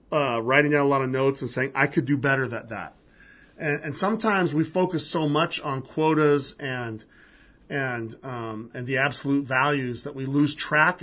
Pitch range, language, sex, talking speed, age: 125-160 Hz, English, male, 190 wpm, 40-59